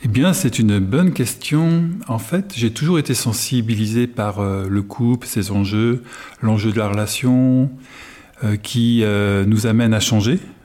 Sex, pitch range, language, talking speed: male, 105-125 Hz, French, 165 wpm